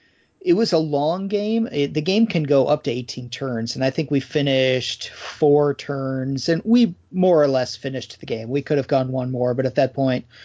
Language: English